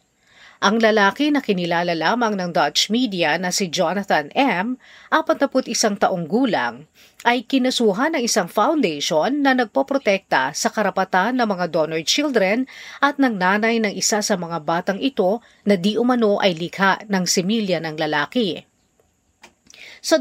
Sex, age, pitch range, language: female, 40-59, 185-255 Hz, Filipino